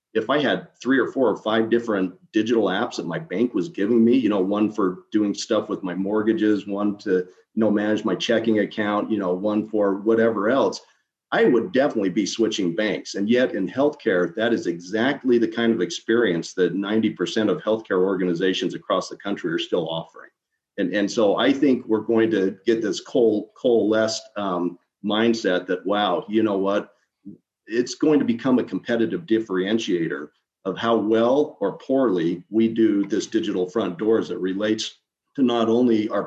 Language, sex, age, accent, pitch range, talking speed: English, male, 40-59, American, 95-115 Hz, 185 wpm